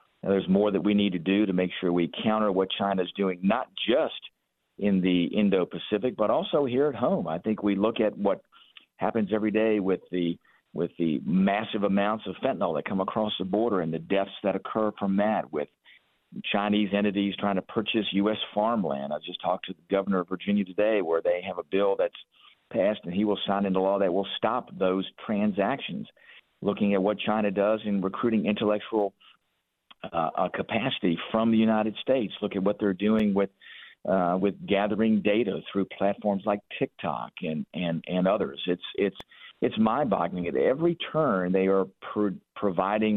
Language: English